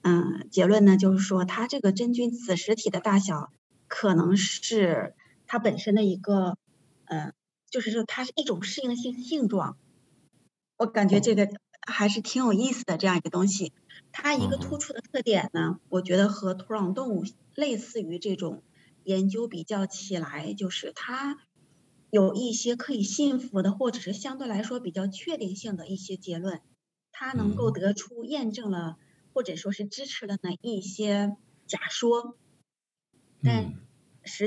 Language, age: Chinese, 20-39